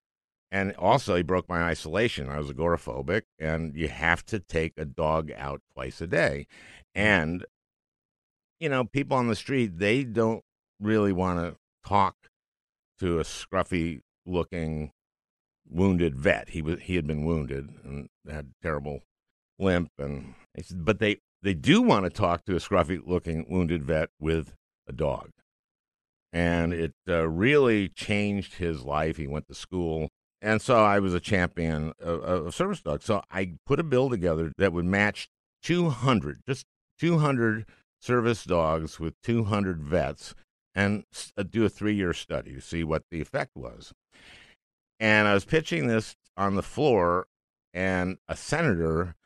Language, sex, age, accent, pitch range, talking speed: English, male, 60-79, American, 80-105 Hz, 155 wpm